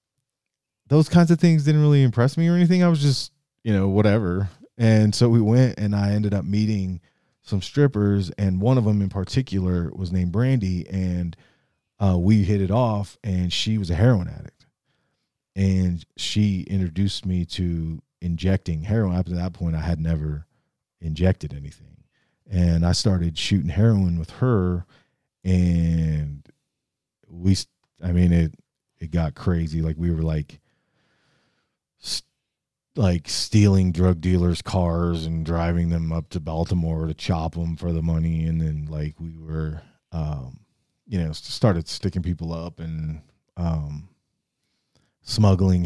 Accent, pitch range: American, 85-100 Hz